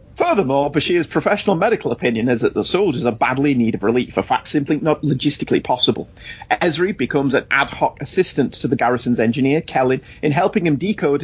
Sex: male